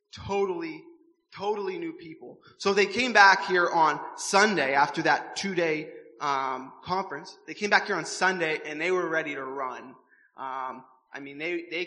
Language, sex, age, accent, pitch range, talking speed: English, male, 20-39, American, 155-210 Hz, 165 wpm